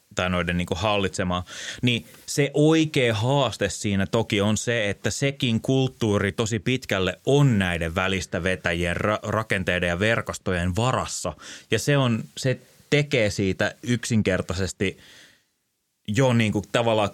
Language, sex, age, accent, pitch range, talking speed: Finnish, male, 20-39, native, 95-125 Hz, 130 wpm